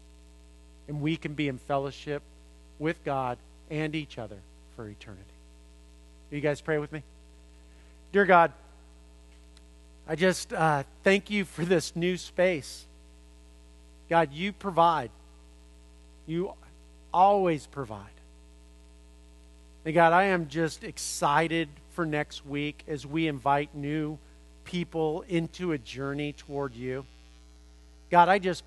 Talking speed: 120 wpm